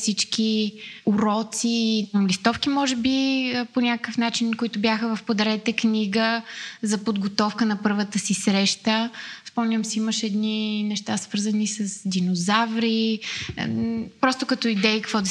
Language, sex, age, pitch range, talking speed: Bulgarian, female, 20-39, 200-230 Hz, 125 wpm